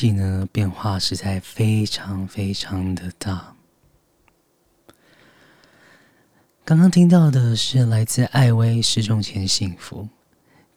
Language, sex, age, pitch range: Chinese, male, 20-39, 95-115 Hz